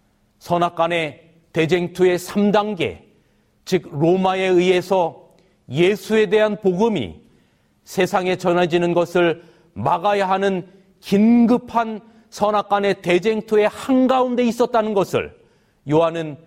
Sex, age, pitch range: male, 40-59, 160-195 Hz